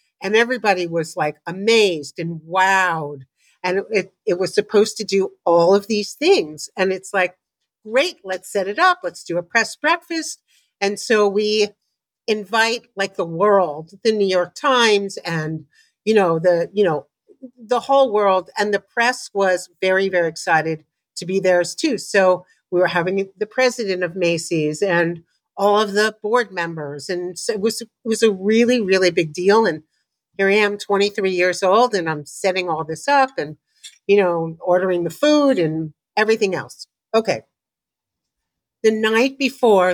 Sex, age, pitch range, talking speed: female, 50-69, 175-225 Hz, 170 wpm